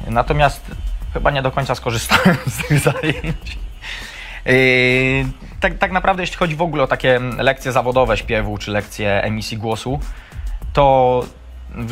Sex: male